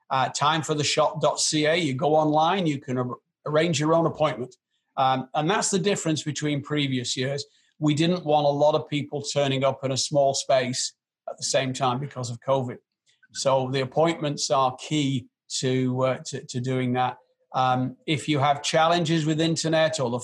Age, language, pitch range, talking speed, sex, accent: 40-59, English, 130-150 Hz, 185 wpm, male, British